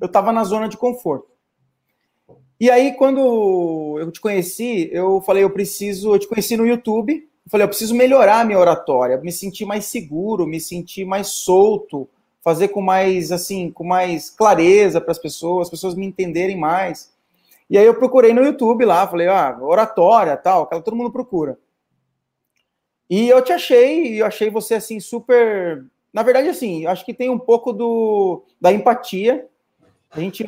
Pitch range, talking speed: 185-240 Hz, 175 wpm